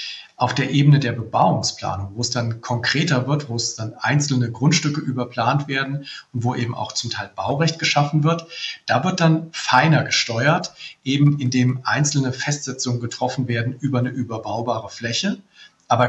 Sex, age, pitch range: male, 40-59, 120-145 Hz